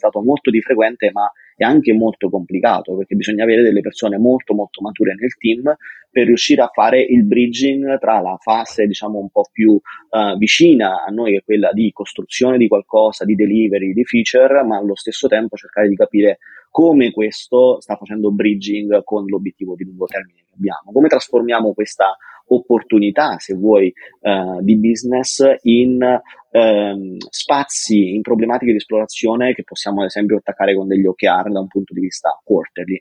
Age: 30-49